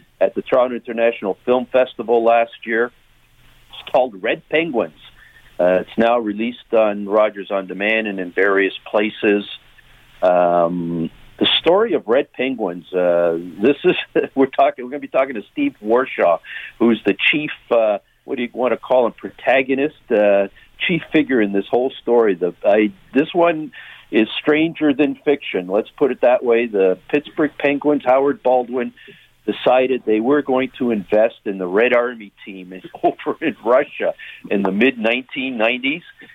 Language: English